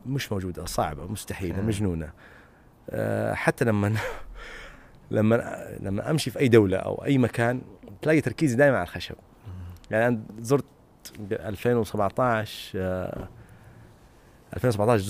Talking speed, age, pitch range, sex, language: 105 wpm, 30-49, 105-140 Hz, male, Arabic